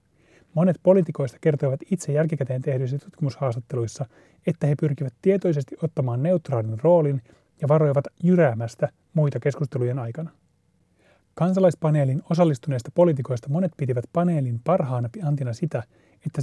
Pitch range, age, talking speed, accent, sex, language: 130-165 Hz, 30-49, 105 wpm, native, male, Finnish